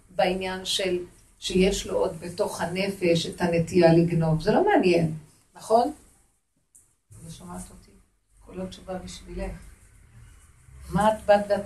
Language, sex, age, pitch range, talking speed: Hebrew, female, 50-69, 170-235 Hz, 125 wpm